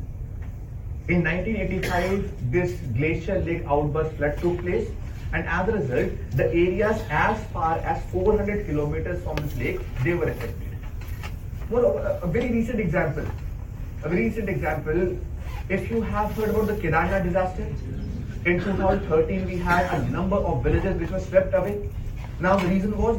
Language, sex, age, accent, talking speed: English, male, 30-49, Indian, 155 wpm